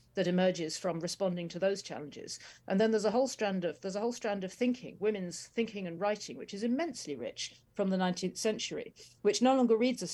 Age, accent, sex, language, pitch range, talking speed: 40-59, British, female, English, 175-215 Hz, 220 wpm